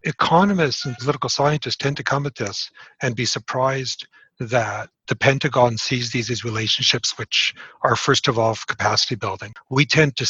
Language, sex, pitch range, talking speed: English, male, 115-140 Hz, 170 wpm